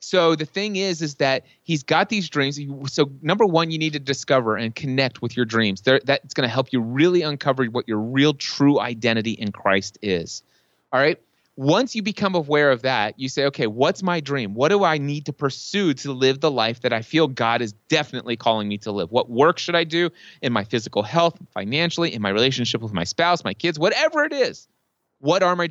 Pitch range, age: 120-165 Hz, 30-49